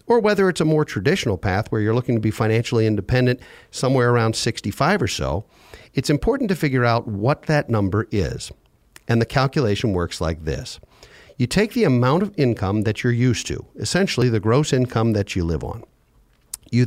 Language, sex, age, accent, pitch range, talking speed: English, male, 50-69, American, 110-150 Hz, 190 wpm